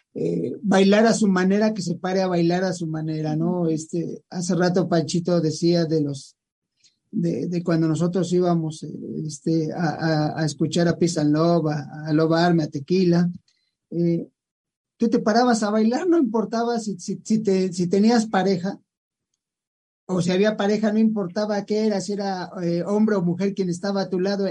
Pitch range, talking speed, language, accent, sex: 180-235 Hz, 170 wpm, English, Mexican, male